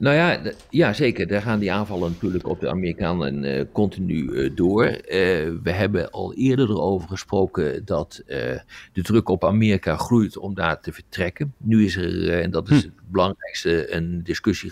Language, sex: Dutch, male